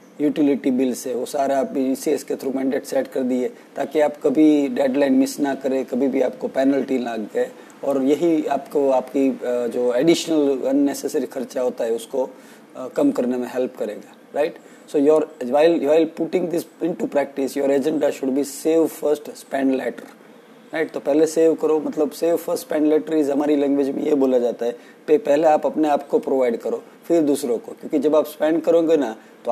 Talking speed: 130 wpm